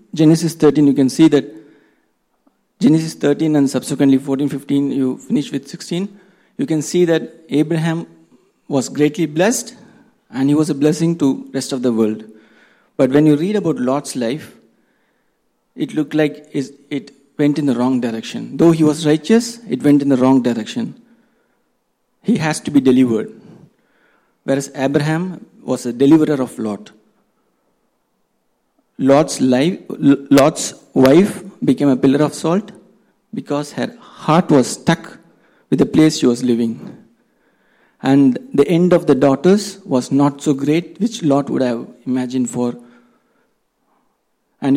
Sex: male